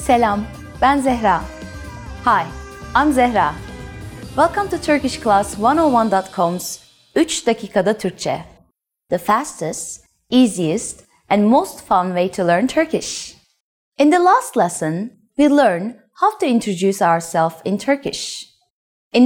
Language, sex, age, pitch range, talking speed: English, female, 30-49, 180-285 Hz, 115 wpm